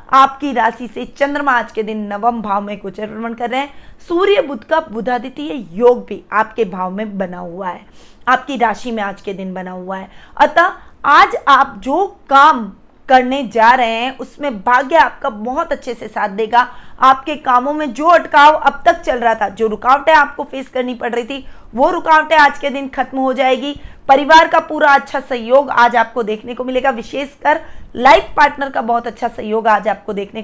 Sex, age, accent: female, 20-39, native